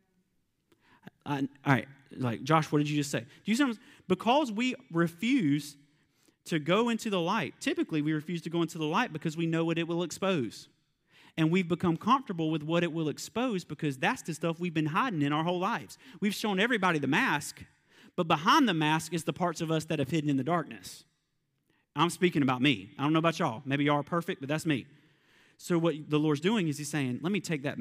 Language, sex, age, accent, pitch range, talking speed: English, male, 30-49, American, 135-170 Hz, 225 wpm